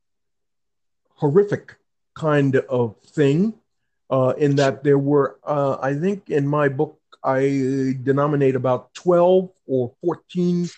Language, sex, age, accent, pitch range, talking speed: English, male, 50-69, American, 115-145 Hz, 115 wpm